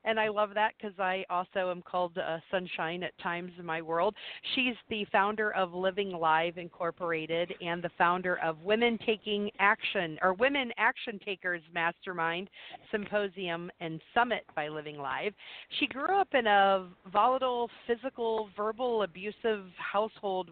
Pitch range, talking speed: 175-215 Hz, 150 wpm